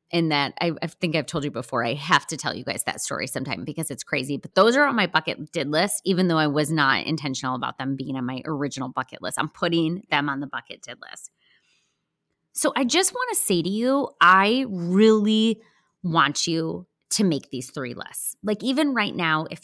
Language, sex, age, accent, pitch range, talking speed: English, female, 30-49, American, 155-215 Hz, 225 wpm